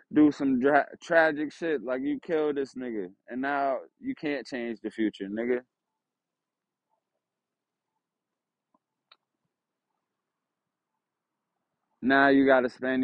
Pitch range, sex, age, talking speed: 125-145 Hz, male, 20-39, 100 wpm